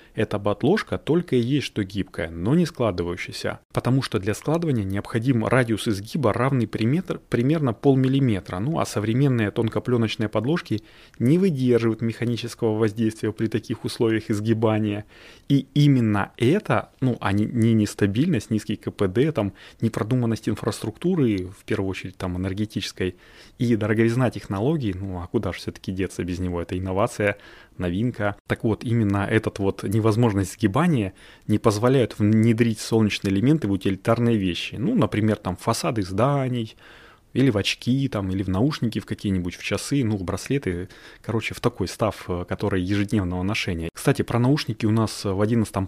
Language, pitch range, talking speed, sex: Russian, 100-120 Hz, 150 wpm, male